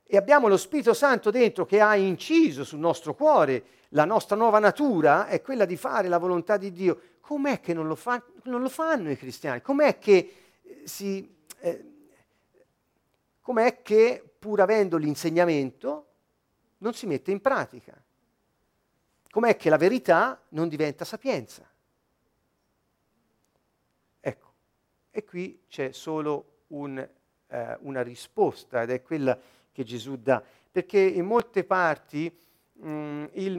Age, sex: 50-69, male